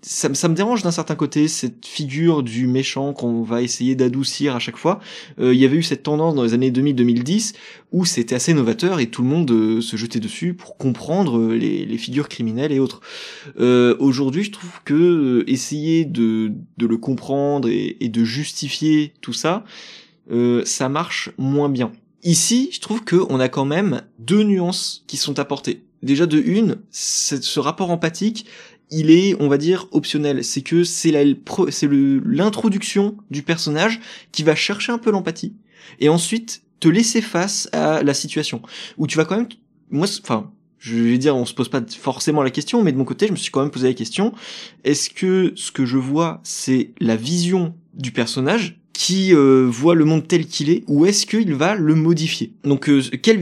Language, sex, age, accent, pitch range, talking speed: French, male, 20-39, French, 130-185 Hz, 195 wpm